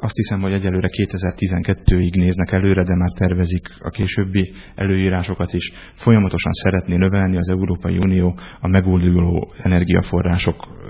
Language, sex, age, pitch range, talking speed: Hungarian, male, 30-49, 90-100 Hz, 125 wpm